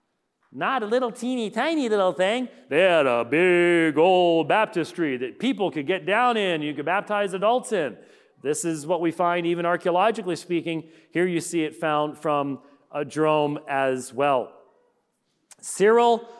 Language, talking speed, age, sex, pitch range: English, 155 wpm, 40-59, male, 160-210 Hz